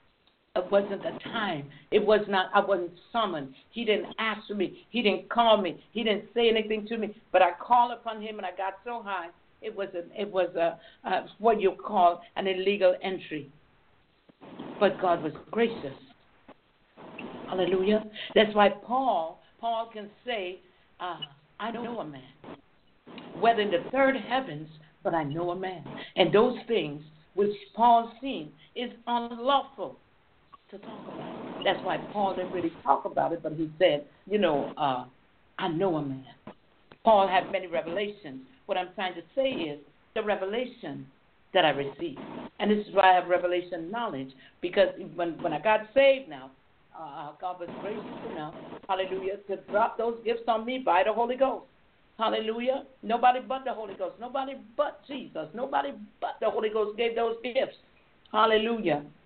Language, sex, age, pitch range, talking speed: English, female, 60-79, 180-230 Hz, 170 wpm